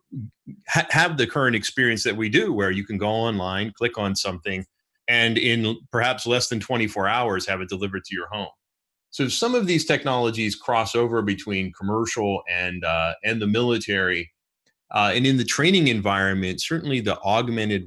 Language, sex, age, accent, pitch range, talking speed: English, male, 30-49, American, 95-115 Hz, 170 wpm